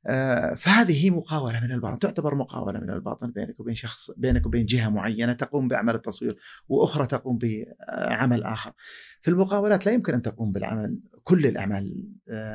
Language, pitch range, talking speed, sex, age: Arabic, 120-160 Hz, 150 wpm, male, 40-59